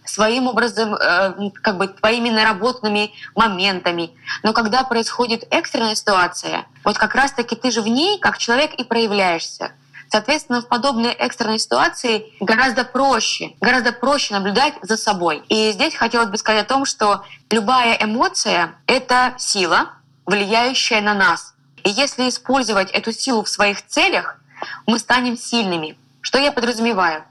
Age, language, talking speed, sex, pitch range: 20-39, Russian, 140 wpm, female, 200-245 Hz